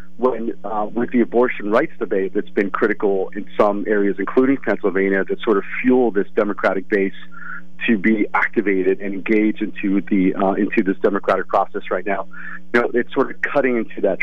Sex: male